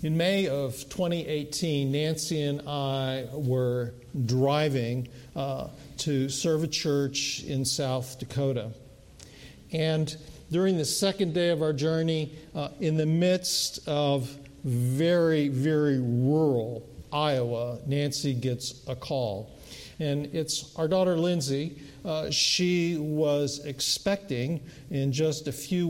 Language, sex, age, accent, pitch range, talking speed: English, male, 50-69, American, 130-160 Hz, 120 wpm